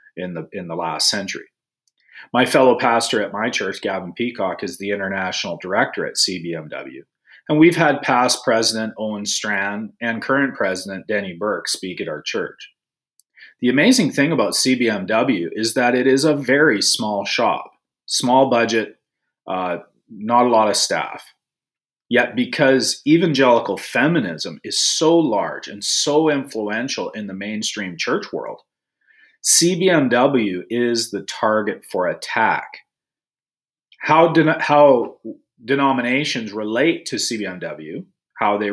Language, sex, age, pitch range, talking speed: English, male, 40-59, 100-140 Hz, 135 wpm